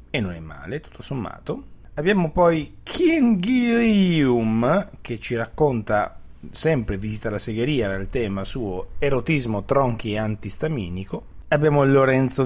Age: 30-49